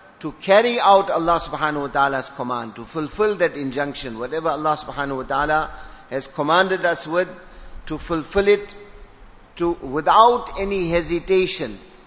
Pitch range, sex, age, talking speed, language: 140-175 Hz, male, 50-69, 140 wpm, English